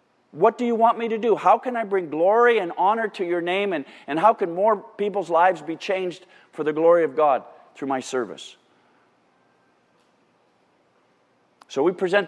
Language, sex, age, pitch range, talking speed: English, male, 50-69, 140-190 Hz, 180 wpm